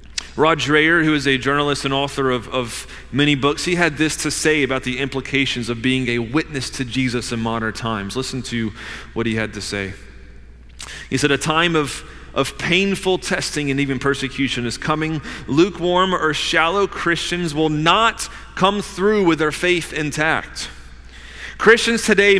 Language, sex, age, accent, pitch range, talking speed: English, male, 30-49, American, 115-180 Hz, 170 wpm